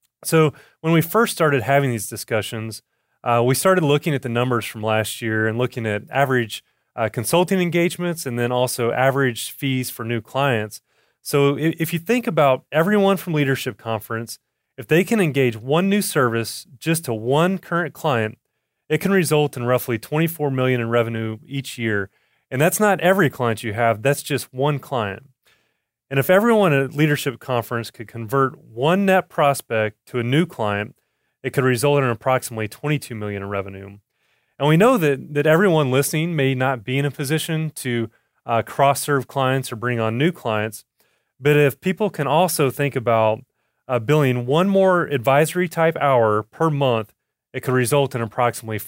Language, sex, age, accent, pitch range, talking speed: English, male, 30-49, American, 115-155 Hz, 175 wpm